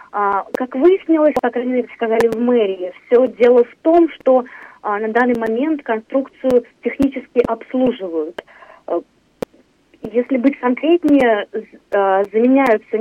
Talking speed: 100 wpm